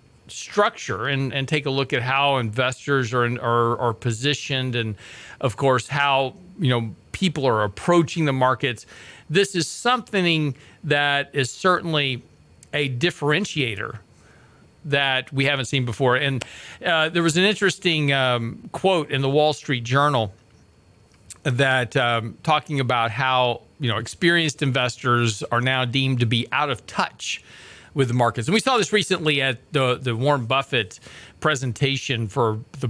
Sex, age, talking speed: male, 40-59, 150 wpm